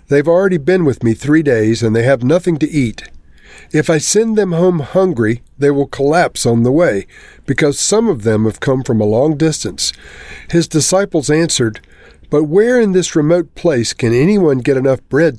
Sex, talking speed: male, 190 wpm